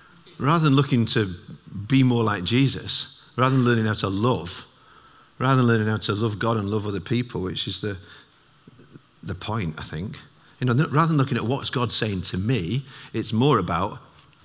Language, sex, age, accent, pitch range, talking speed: English, male, 50-69, British, 110-145 Hz, 190 wpm